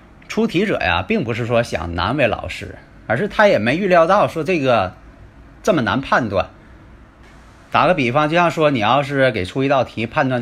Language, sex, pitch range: Chinese, male, 115-175 Hz